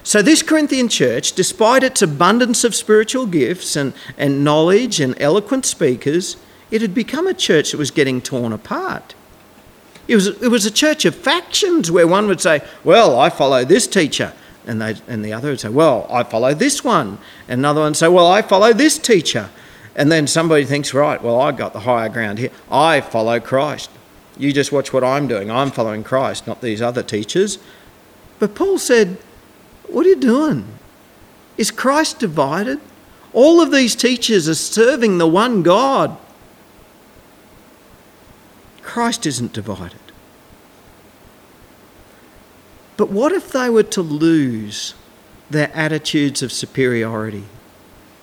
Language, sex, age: English, male, 40-59